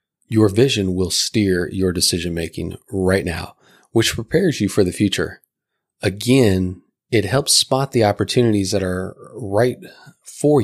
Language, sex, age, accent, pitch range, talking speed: English, male, 30-49, American, 95-115 Hz, 135 wpm